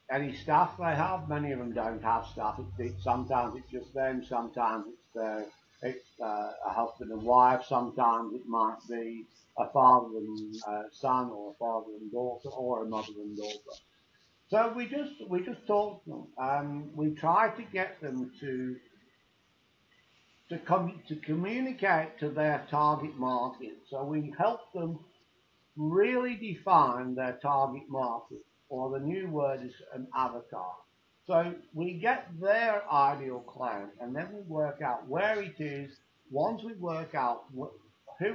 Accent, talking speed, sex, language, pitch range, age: British, 160 wpm, male, English, 125-165 Hz, 60-79